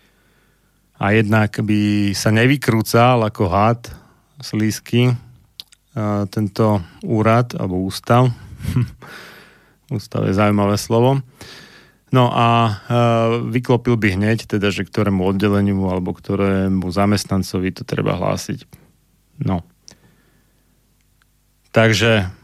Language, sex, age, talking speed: Slovak, male, 30-49, 90 wpm